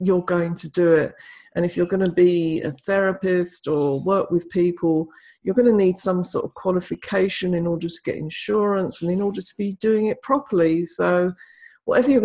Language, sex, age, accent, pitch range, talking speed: English, female, 50-69, British, 170-200 Hz, 200 wpm